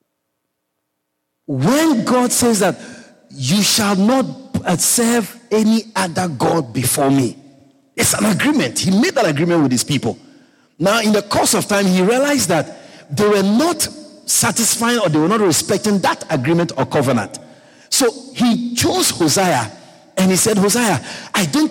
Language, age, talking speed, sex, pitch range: English, 50-69, 150 wpm, male, 130-225 Hz